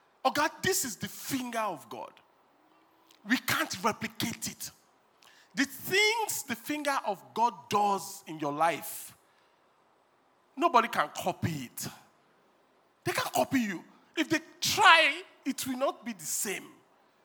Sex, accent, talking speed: male, Nigerian, 135 wpm